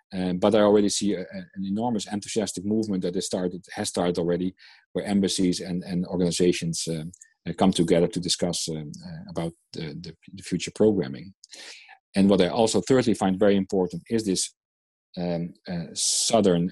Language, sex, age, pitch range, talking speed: English, male, 40-59, 90-110 Hz, 165 wpm